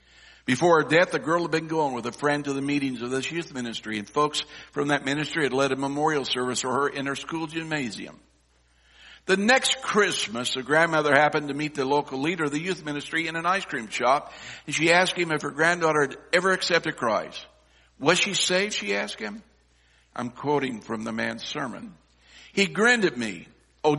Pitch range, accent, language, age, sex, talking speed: 120-170 Hz, American, English, 60-79, male, 205 wpm